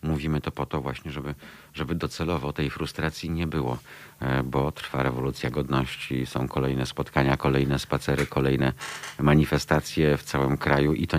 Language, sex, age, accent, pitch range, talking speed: Polish, male, 50-69, native, 65-80 Hz, 150 wpm